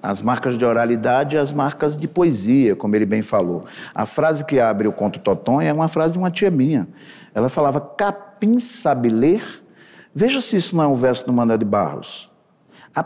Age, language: 50-69, Portuguese